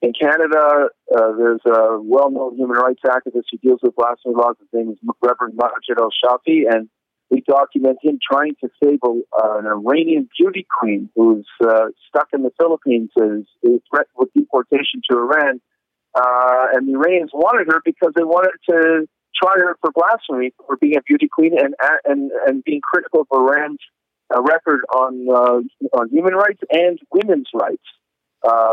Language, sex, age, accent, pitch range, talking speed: English, male, 50-69, American, 120-160 Hz, 170 wpm